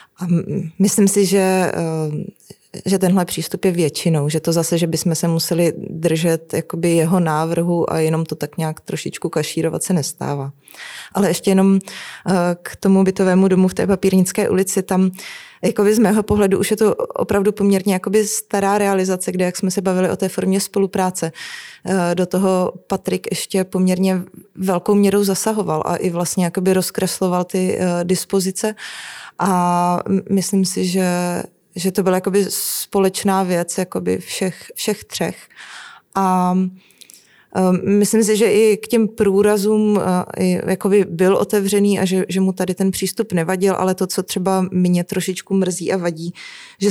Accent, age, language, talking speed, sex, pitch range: native, 20-39, Czech, 150 wpm, female, 170-195 Hz